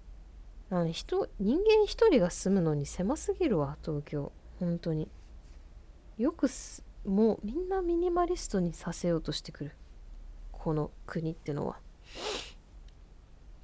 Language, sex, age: Japanese, female, 20-39